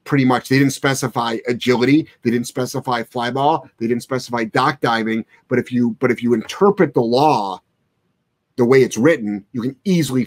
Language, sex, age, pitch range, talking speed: English, male, 30-49, 120-145 Hz, 180 wpm